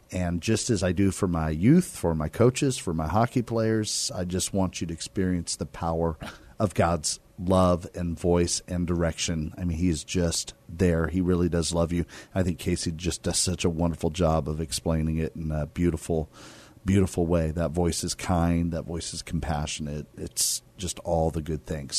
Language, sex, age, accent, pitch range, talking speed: English, male, 40-59, American, 80-95 Hz, 195 wpm